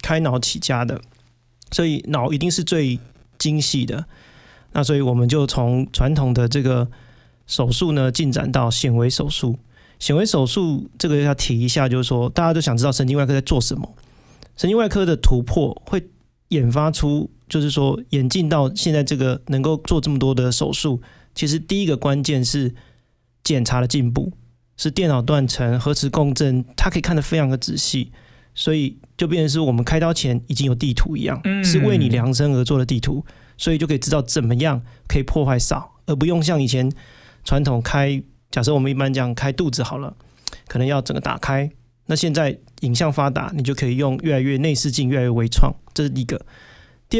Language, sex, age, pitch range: Chinese, male, 30-49, 125-155 Hz